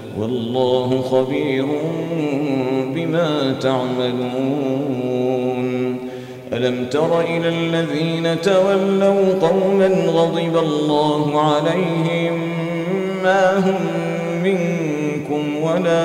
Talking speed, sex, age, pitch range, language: 65 wpm, male, 40-59, 130-170 Hz, Arabic